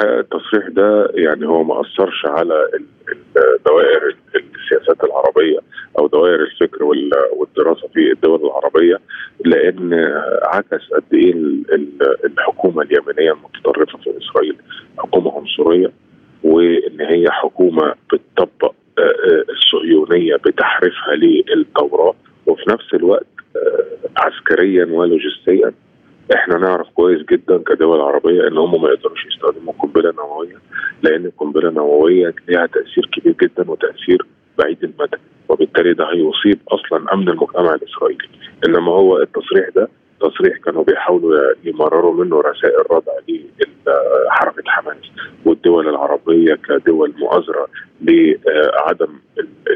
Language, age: Arabic, 30-49